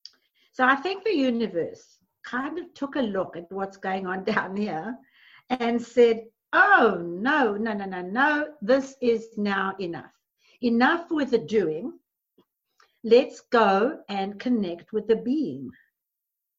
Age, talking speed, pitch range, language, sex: 60-79, 140 wpm, 200-250 Hz, English, female